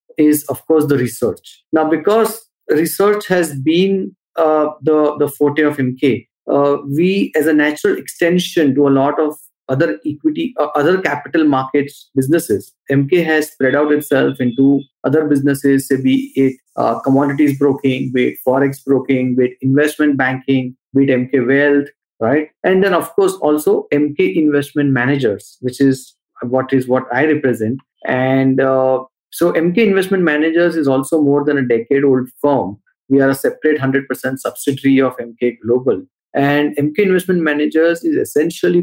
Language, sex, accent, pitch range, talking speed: English, male, Indian, 130-155 Hz, 160 wpm